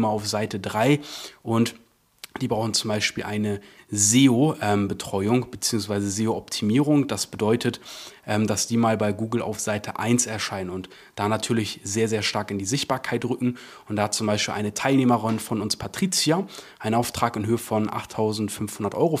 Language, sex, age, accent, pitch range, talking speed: German, male, 30-49, German, 105-130 Hz, 155 wpm